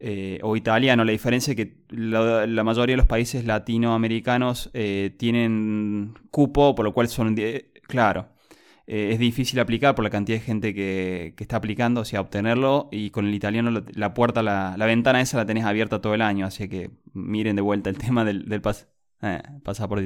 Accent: Argentinian